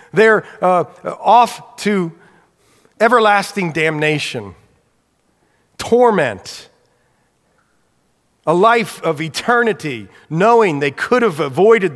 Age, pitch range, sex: 40-59, 145-200 Hz, male